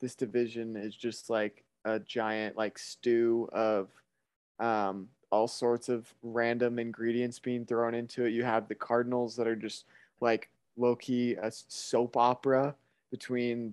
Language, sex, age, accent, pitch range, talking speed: English, male, 20-39, American, 110-130 Hz, 150 wpm